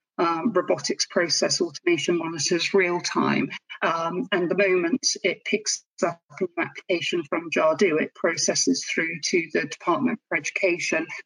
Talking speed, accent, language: 140 wpm, British, English